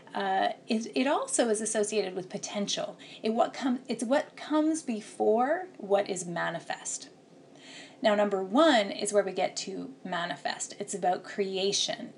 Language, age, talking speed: English, 30-49, 150 wpm